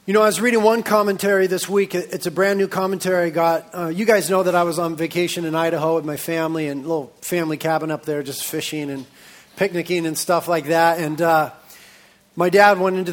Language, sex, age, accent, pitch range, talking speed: English, male, 30-49, American, 165-200 Hz, 235 wpm